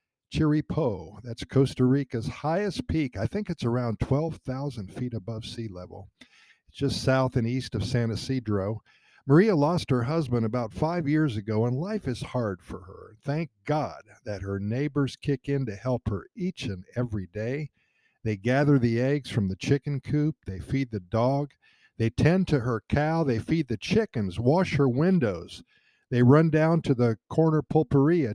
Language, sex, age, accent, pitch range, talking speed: English, male, 50-69, American, 110-145 Hz, 175 wpm